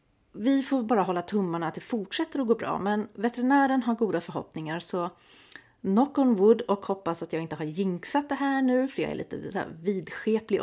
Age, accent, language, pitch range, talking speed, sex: 30-49, native, Swedish, 170-240 Hz, 210 wpm, female